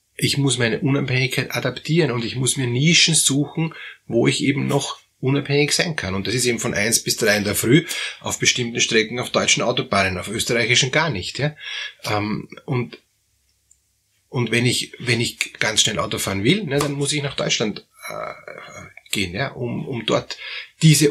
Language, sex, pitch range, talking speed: German, male, 115-145 Hz, 175 wpm